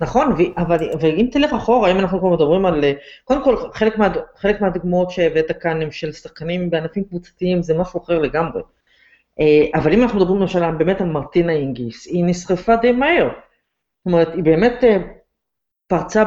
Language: Hebrew